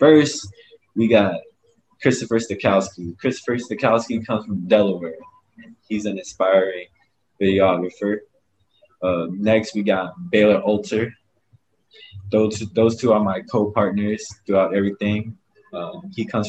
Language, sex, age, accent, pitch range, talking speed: English, male, 20-39, American, 100-150 Hz, 115 wpm